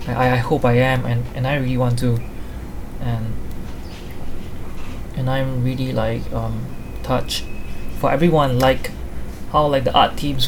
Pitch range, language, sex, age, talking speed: 120-135 Hz, English, male, 20-39, 150 wpm